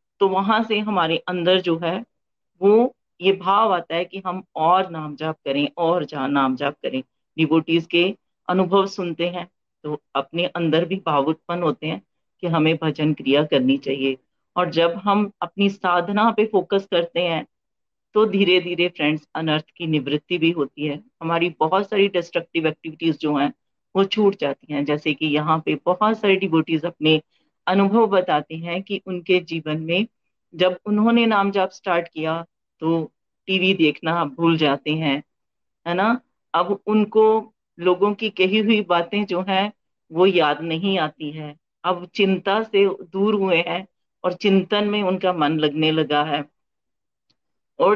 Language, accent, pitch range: Hindi, native, 155-195 Hz